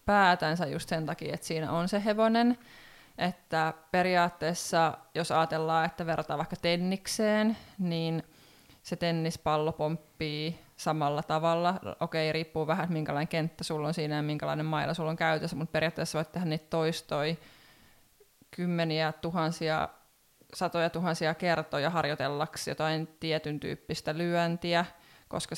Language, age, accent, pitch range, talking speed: Finnish, 20-39, native, 155-175 Hz, 130 wpm